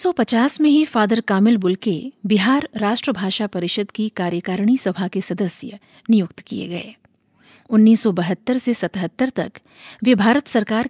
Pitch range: 195-245 Hz